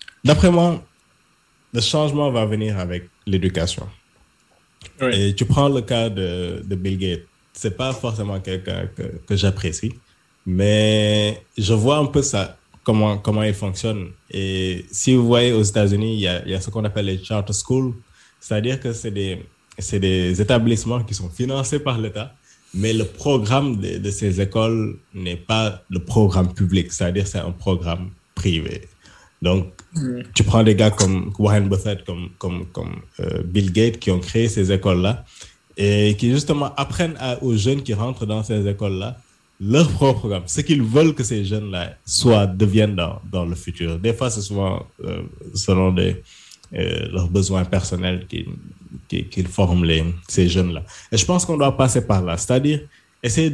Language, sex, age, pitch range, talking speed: French, male, 20-39, 95-115 Hz, 175 wpm